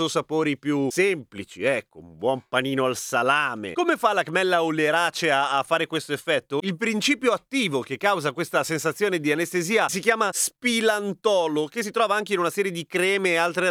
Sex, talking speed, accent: male, 190 wpm, native